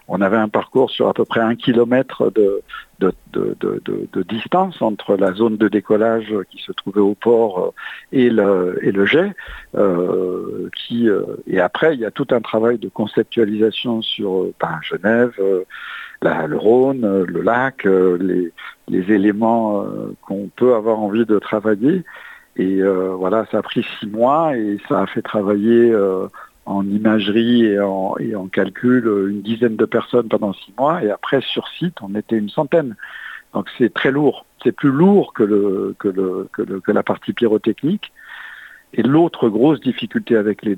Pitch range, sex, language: 100-120 Hz, male, French